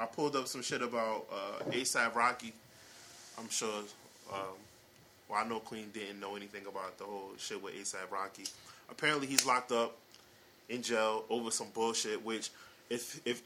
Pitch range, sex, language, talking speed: 110-130 Hz, male, English, 175 wpm